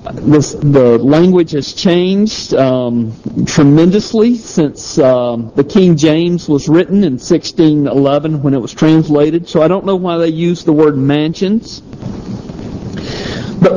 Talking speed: 135 wpm